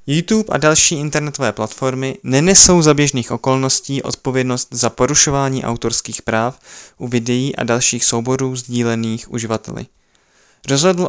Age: 20-39